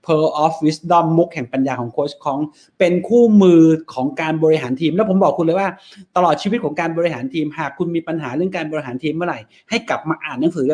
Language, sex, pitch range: Thai, male, 150-185 Hz